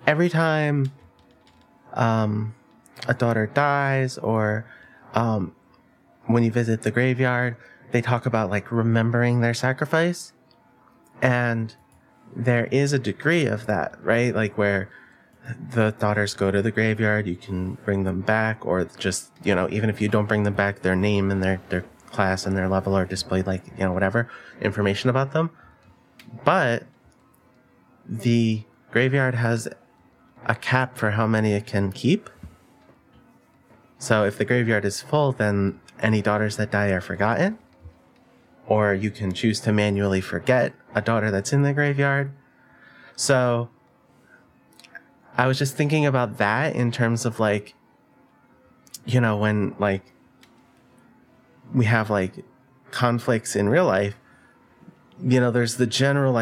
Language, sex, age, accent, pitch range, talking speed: English, male, 30-49, American, 100-125 Hz, 145 wpm